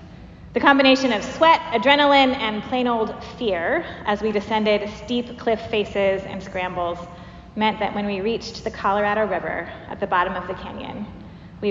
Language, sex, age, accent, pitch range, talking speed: English, female, 20-39, American, 205-270 Hz, 165 wpm